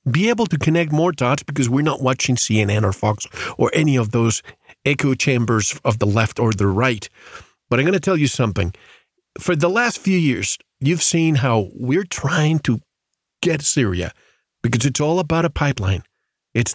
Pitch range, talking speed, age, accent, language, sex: 115-165 Hz, 185 wpm, 50-69, American, English, male